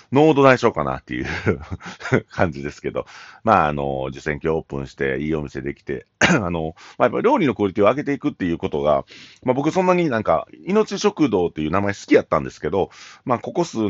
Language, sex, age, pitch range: Japanese, male, 40-59, 75-115 Hz